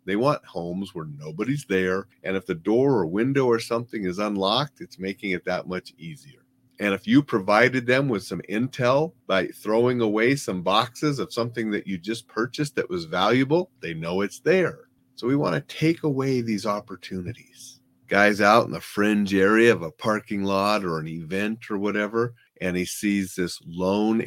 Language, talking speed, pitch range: English, 190 wpm, 90-120 Hz